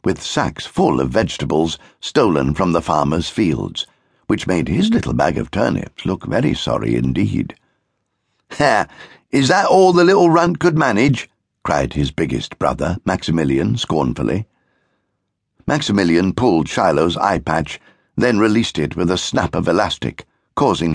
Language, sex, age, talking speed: English, male, 60-79, 140 wpm